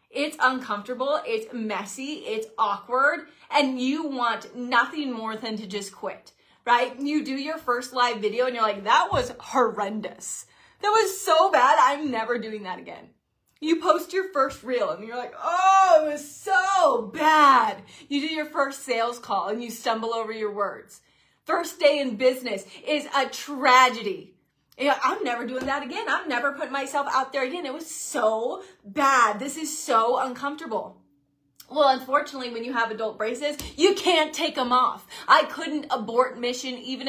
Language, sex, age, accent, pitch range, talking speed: English, female, 30-49, American, 240-295 Hz, 175 wpm